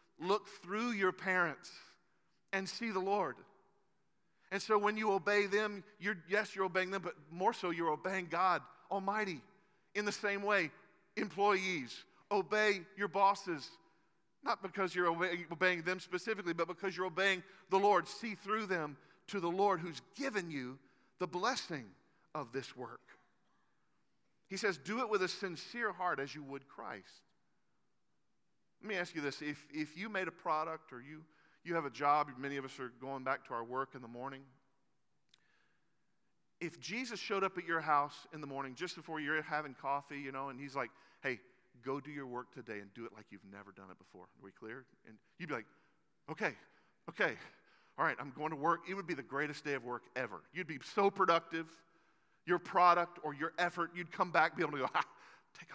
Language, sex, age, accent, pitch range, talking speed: English, male, 50-69, American, 145-195 Hz, 190 wpm